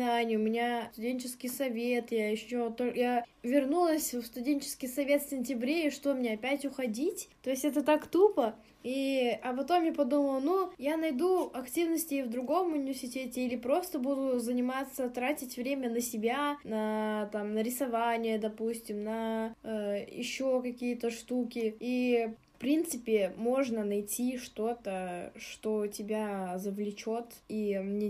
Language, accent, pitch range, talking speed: Russian, native, 225-280 Hz, 140 wpm